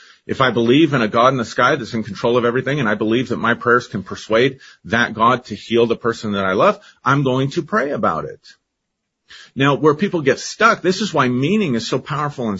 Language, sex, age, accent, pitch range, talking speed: English, male, 40-59, American, 110-140 Hz, 240 wpm